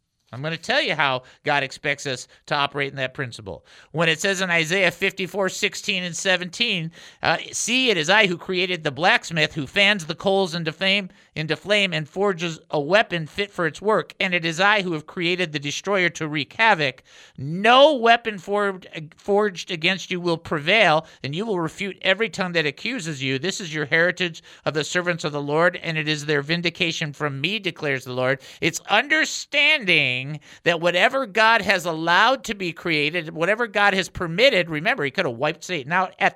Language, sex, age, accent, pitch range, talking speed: English, male, 50-69, American, 145-195 Hz, 190 wpm